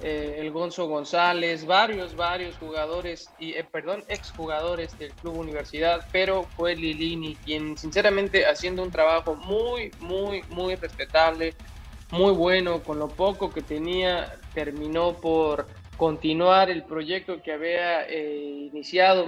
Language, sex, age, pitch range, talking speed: Spanish, male, 20-39, 155-185 Hz, 130 wpm